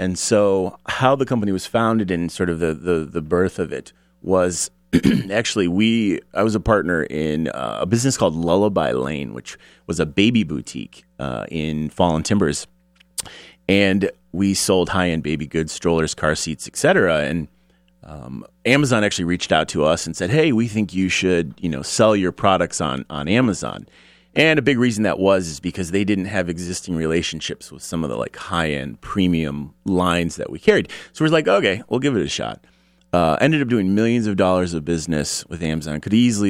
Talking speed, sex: 195 wpm, male